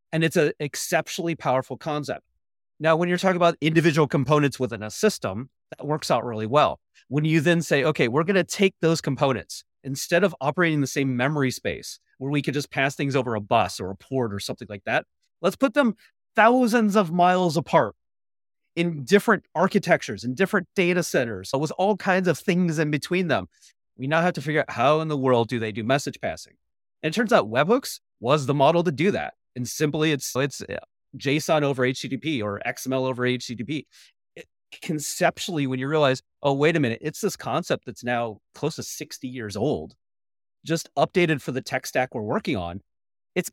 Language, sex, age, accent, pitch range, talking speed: English, male, 30-49, American, 125-170 Hz, 195 wpm